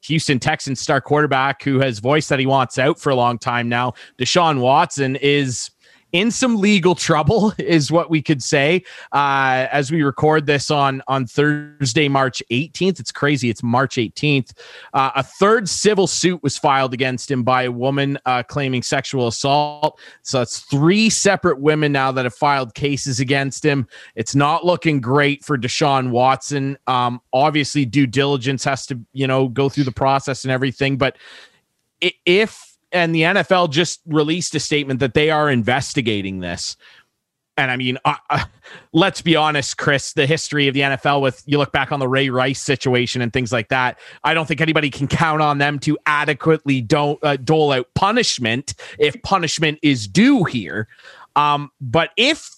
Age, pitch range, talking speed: 30-49, 130-160 Hz, 180 wpm